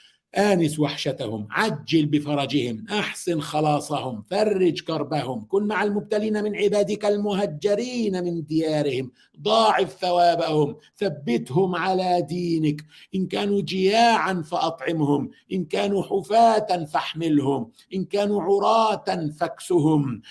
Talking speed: 100 wpm